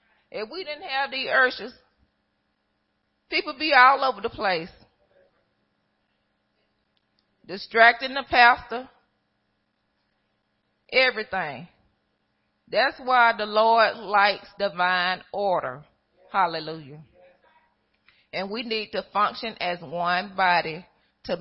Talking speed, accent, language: 95 wpm, American, English